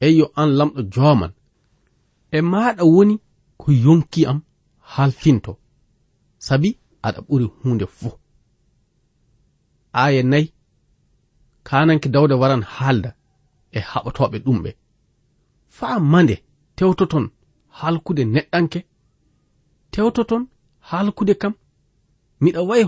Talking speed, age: 80 wpm, 40-59